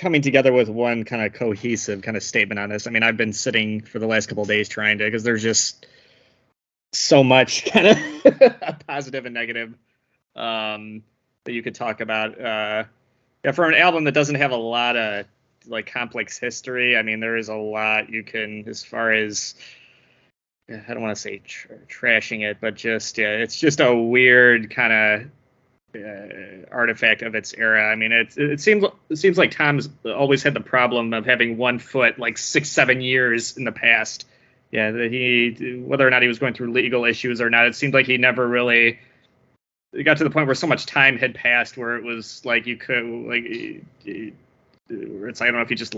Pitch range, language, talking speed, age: 110-130 Hz, English, 210 wpm, 20-39